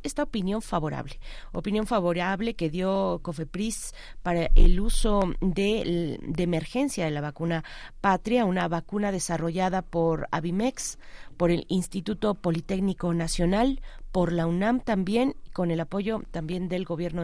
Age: 30-49